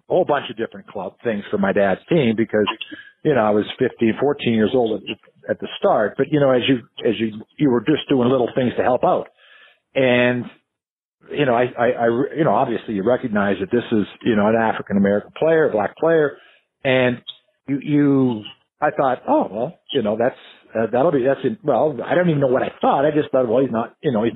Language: English